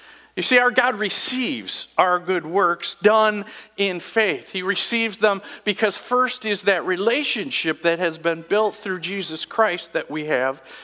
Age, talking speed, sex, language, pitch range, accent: 50-69, 160 wpm, male, English, 175-225 Hz, American